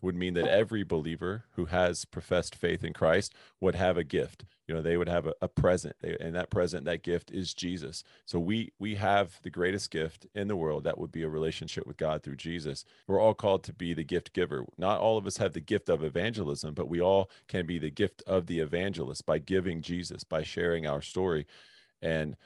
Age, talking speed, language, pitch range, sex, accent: 40-59, 225 wpm, English, 80-95 Hz, male, American